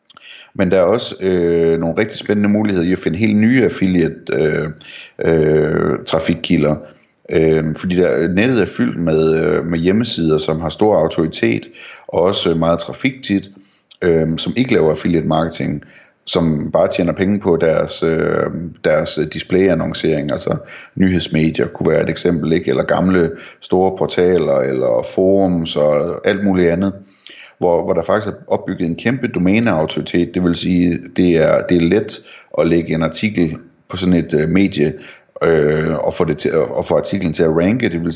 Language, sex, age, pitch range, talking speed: Danish, male, 30-49, 80-95 Hz, 150 wpm